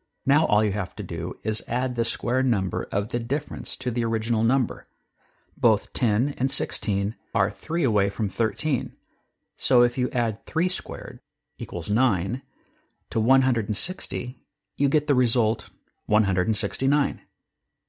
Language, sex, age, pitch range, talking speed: English, male, 50-69, 100-135 Hz, 140 wpm